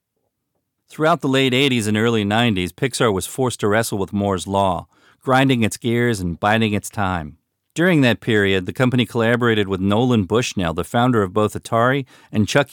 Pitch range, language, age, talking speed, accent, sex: 100-130 Hz, English, 40-59, 180 wpm, American, male